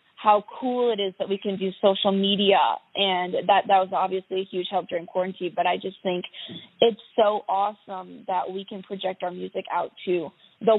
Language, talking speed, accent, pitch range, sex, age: English, 200 wpm, American, 185-210 Hz, female, 20-39